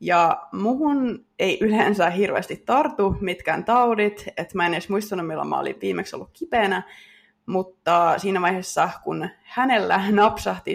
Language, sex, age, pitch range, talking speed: Finnish, female, 20-39, 190-240 Hz, 140 wpm